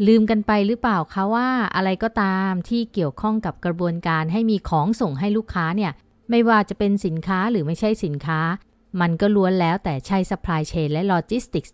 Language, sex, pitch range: Thai, female, 170-230 Hz